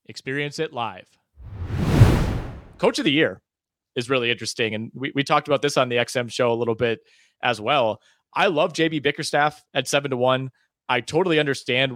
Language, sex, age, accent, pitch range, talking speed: English, male, 30-49, American, 125-160 Hz, 180 wpm